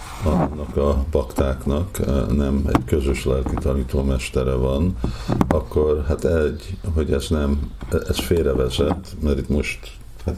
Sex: male